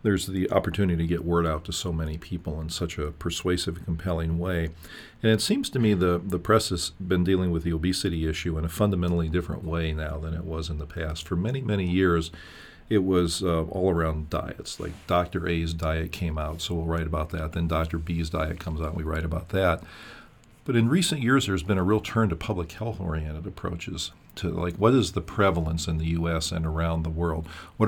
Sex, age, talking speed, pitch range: male, 50-69, 220 wpm, 80-95 Hz